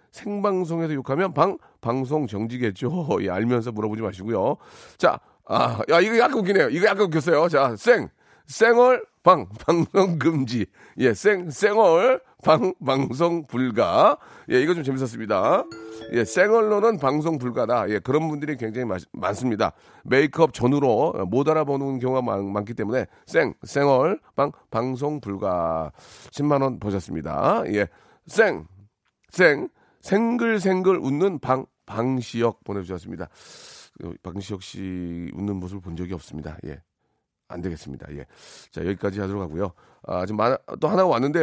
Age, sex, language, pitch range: 40-59, male, Korean, 105-175 Hz